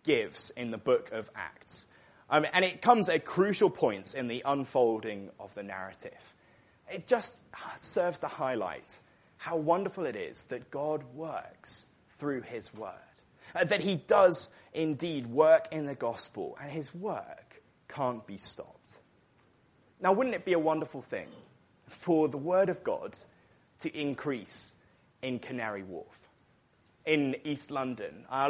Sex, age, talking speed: male, 20-39, 145 wpm